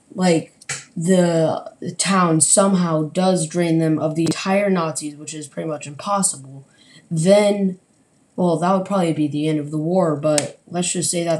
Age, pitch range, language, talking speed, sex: 10-29, 150-180 Hz, English, 170 wpm, female